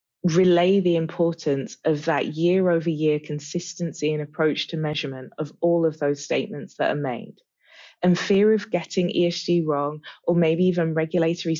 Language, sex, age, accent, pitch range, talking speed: English, female, 20-39, British, 150-175 Hz, 150 wpm